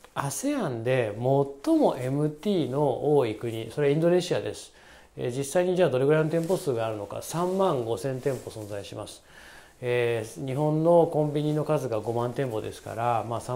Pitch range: 120-190 Hz